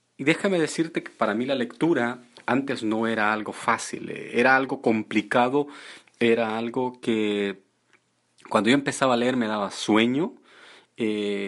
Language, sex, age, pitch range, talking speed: Spanish, male, 30-49, 110-140 Hz, 145 wpm